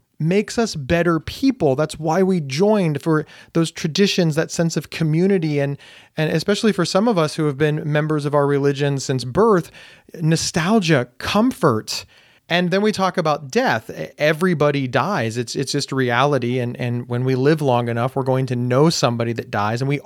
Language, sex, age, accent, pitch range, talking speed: English, male, 30-49, American, 130-165 Hz, 180 wpm